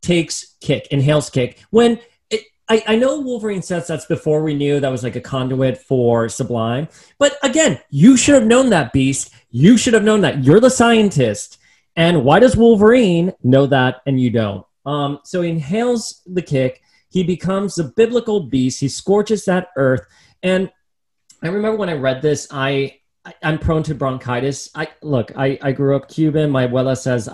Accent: American